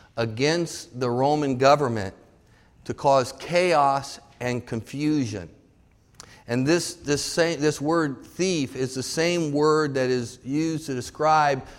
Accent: American